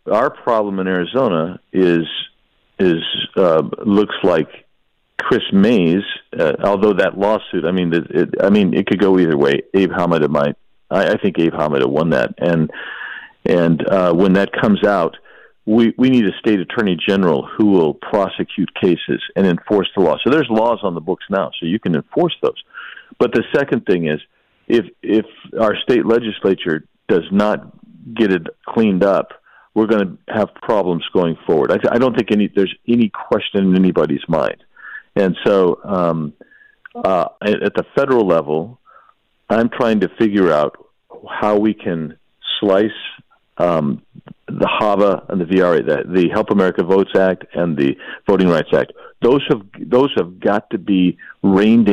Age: 50-69